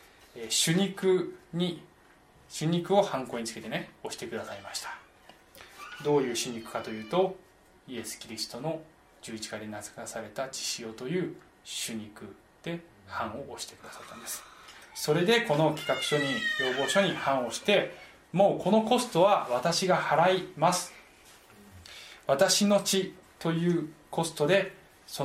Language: Japanese